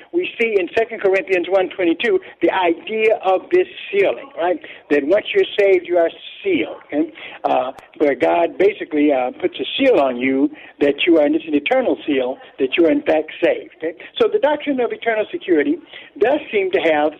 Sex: male